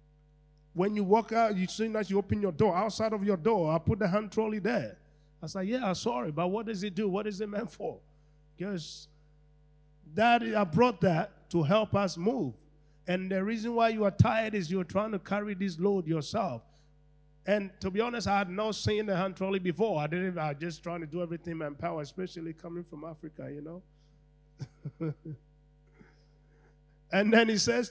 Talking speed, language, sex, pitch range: 200 wpm, English, male, 150-195 Hz